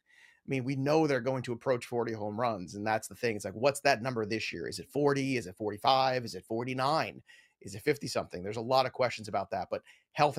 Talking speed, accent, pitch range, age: 255 wpm, American, 120-155 Hz, 30-49